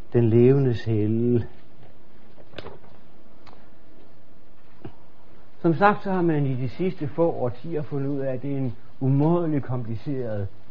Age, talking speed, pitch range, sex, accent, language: 60-79, 125 wpm, 110-145 Hz, male, native, Danish